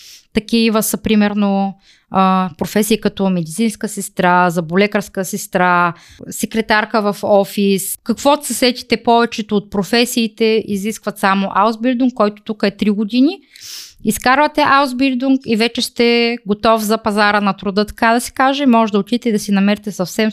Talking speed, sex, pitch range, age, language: 140 wpm, female, 200-250 Hz, 20-39, Bulgarian